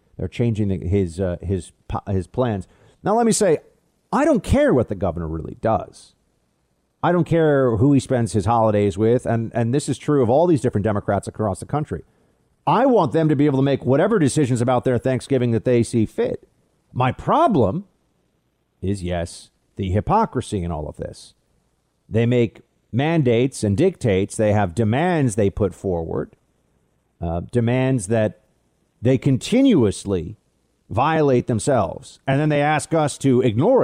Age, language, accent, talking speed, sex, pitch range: 50-69, English, American, 165 wpm, male, 105-145 Hz